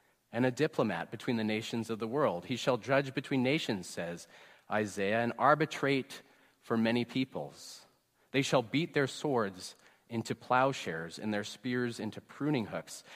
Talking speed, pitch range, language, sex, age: 155 wpm, 110-135 Hz, English, male, 30-49